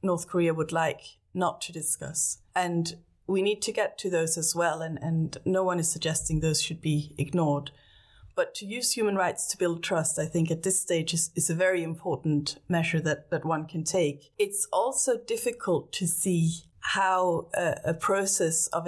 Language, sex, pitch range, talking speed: English, female, 155-180 Hz, 190 wpm